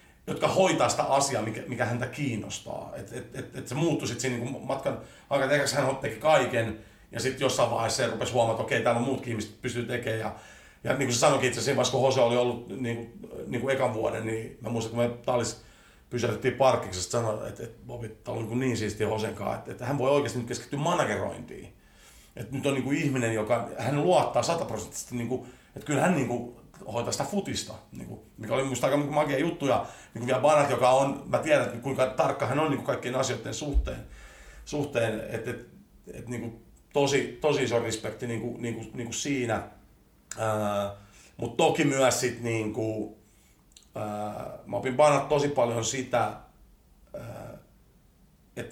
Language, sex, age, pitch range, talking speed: Finnish, male, 40-59, 110-135 Hz, 185 wpm